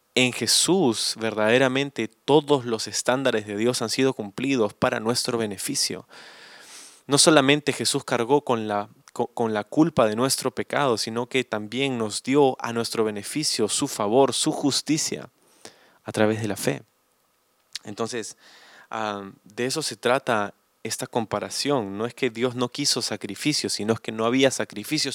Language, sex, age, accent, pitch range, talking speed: Spanish, male, 20-39, Argentinian, 105-130 Hz, 145 wpm